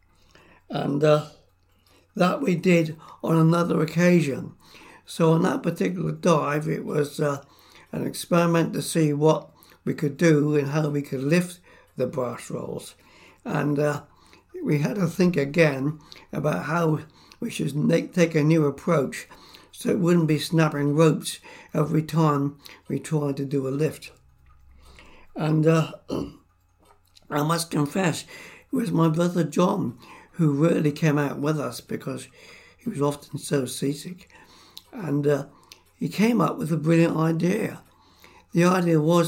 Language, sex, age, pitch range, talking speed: English, male, 60-79, 145-165 Hz, 145 wpm